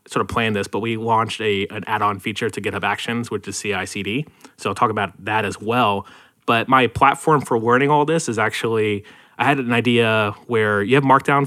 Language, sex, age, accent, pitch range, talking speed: English, male, 20-39, American, 100-125 Hz, 215 wpm